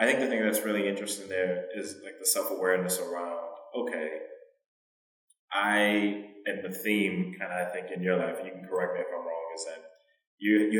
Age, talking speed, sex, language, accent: 20-39, 205 wpm, male, English, American